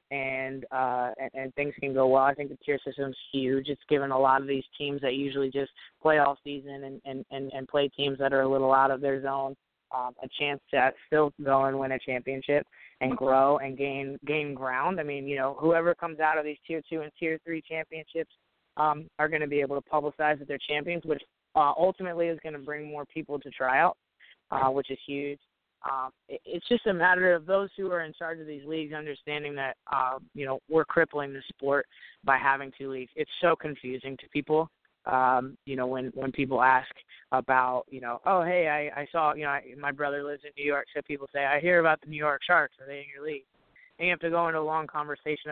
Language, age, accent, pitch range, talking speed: English, 20-39, American, 135-150 Hz, 235 wpm